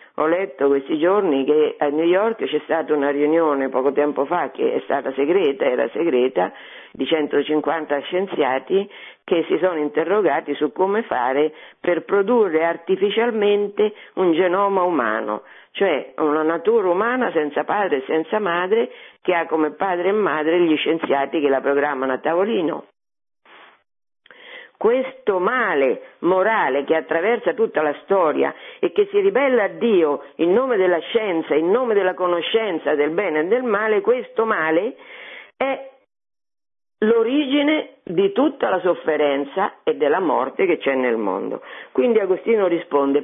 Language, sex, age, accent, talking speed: Italian, female, 50-69, native, 145 wpm